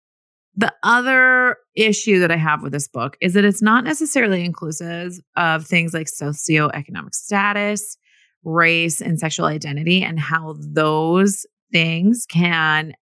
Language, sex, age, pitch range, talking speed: English, female, 30-49, 155-210 Hz, 135 wpm